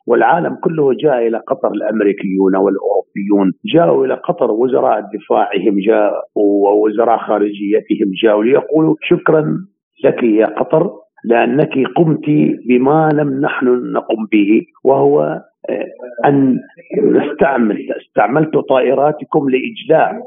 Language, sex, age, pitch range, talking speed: Arabic, male, 50-69, 100-155 Hz, 100 wpm